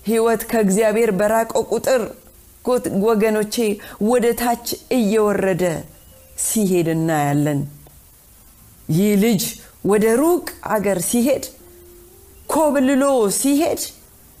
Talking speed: 60 wpm